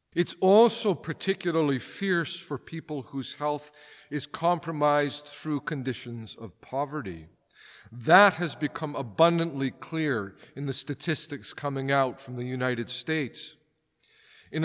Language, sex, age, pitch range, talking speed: English, male, 50-69, 130-170 Hz, 120 wpm